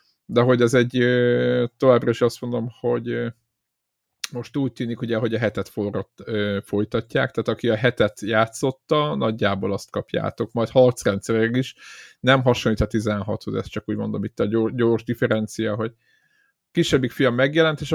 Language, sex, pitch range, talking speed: Hungarian, male, 115-155 Hz, 155 wpm